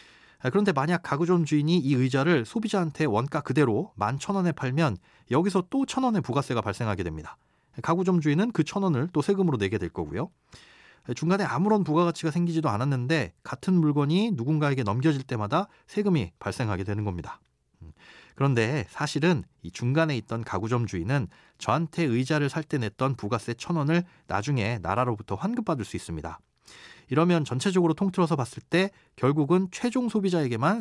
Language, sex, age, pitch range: Korean, male, 30-49, 115-165 Hz